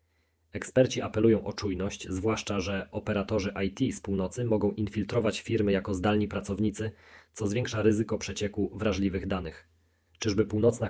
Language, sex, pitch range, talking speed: Polish, male, 95-110 Hz, 130 wpm